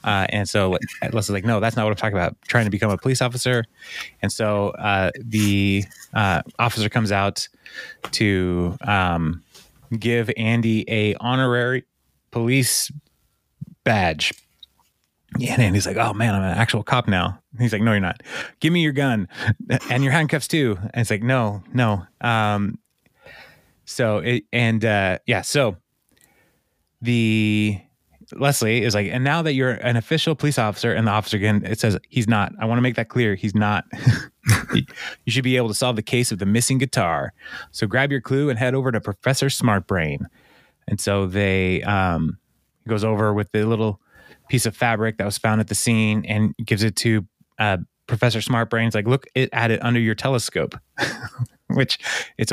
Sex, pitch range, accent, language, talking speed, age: male, 100-125 Hz, American, English, 180 wpm, 20-39